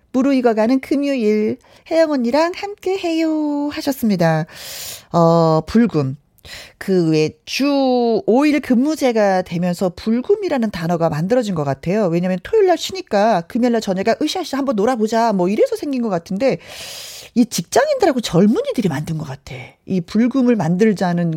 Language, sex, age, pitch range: Korean, female, 40-59, 180-275 Hz